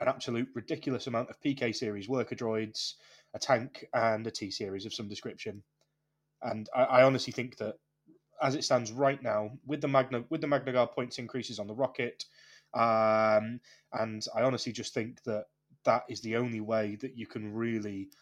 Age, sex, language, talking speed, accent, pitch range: 20-39, male, English, 185 wpm, British, 110-130 Hz